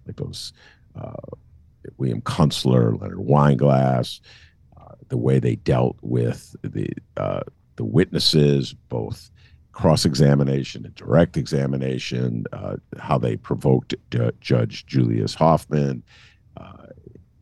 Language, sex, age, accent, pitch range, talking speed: English, male, 50-69, American, 65-75 Hz, 105 wpm